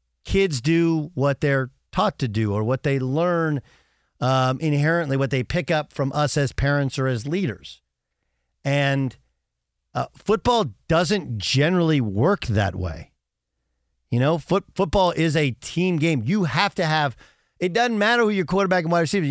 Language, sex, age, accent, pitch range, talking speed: English, male, 50-69, American, 110-170 Hz, 165 wpm